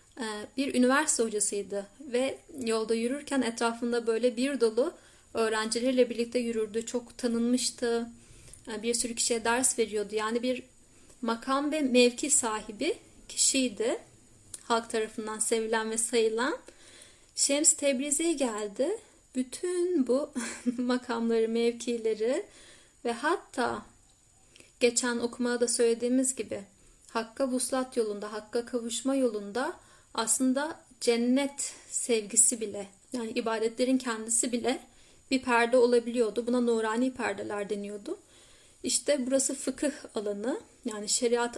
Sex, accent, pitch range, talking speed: female, native, 230-265 Hz, 105 wpm